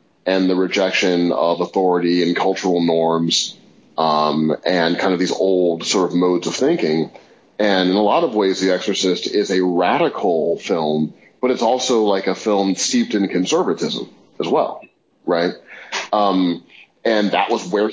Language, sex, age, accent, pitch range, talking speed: English, male, 30-49, American, 90-120 Hz, 160 wpm